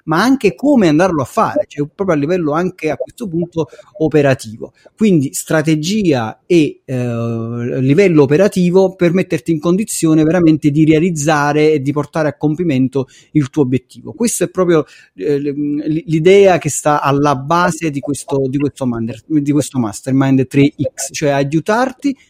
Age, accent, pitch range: 30-49, native, 135-165 Hz